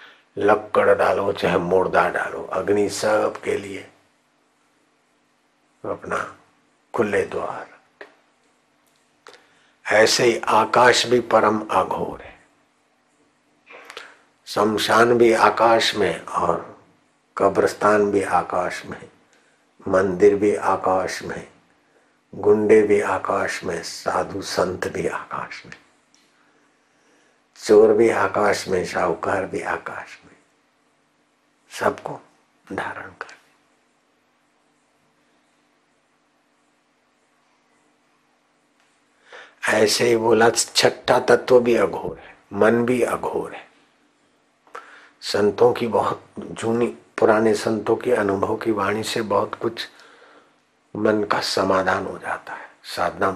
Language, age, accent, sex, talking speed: Hindi, 60-79, native, male, 95 wpm